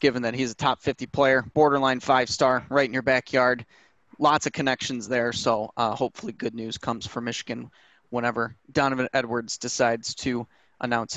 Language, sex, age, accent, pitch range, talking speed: English, male, 30-49, American, 125-155 Hz, 165 wpm